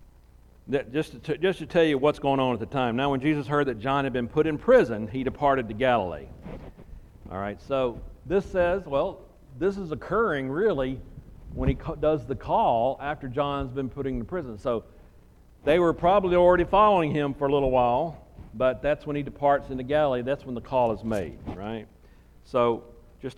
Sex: male